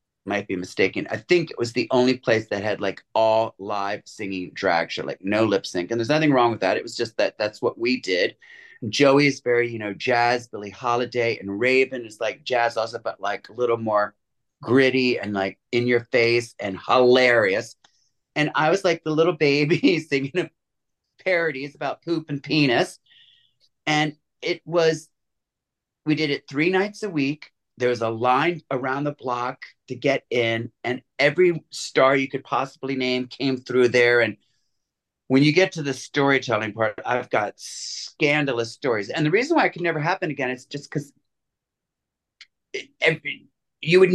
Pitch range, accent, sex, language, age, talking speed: 120-155 Hz, American, male, English, 30-49, 180 wpm